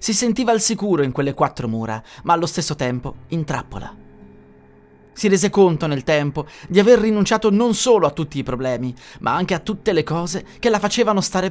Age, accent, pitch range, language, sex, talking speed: 30-49, native, 125-195 Hz, Italian, male, 200 wpm